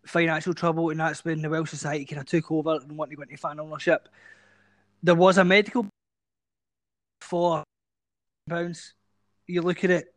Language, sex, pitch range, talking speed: English, male, 155-180 Hz, 165 wpm